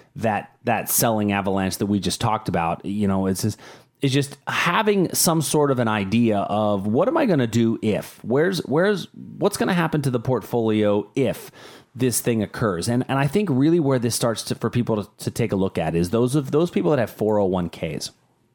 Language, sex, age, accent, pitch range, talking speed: English, male, 30-49, American, 105-135 Hz, 215 wpm